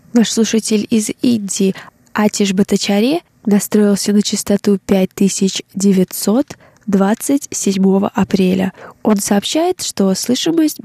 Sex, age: female, 20-39